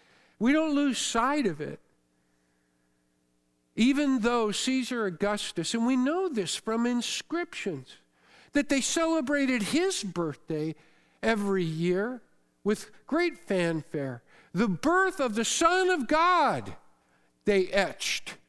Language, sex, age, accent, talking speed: English, male, 50-69, American, 115 wpm